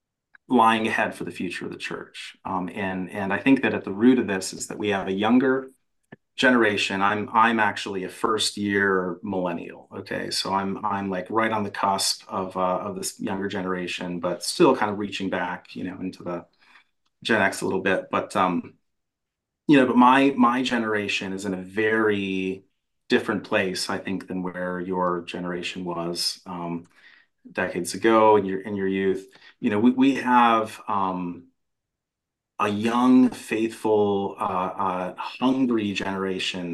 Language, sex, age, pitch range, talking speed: English, male, 30-49, 95-110 Hz, 170 wpm